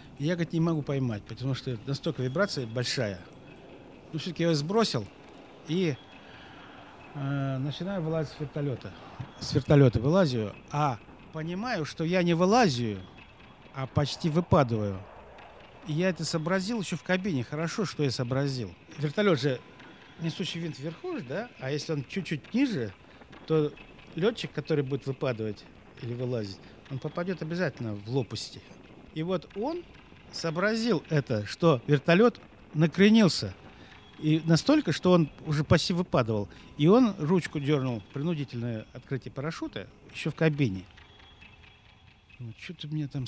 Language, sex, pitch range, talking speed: Russian, male, 125-170 Hz, 135 wpm